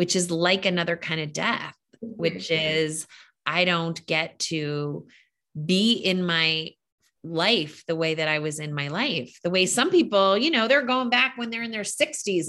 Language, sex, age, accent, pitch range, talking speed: English, female, 30-49, American, 160-190 Hz, 185 wpm